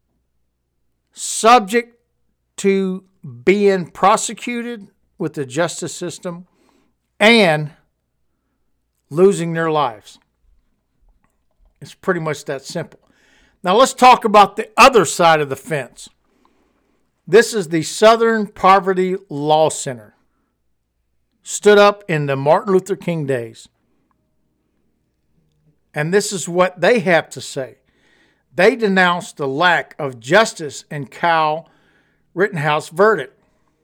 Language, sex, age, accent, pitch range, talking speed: English, male, 60-79, American, 140-200 Hz, 105 wpm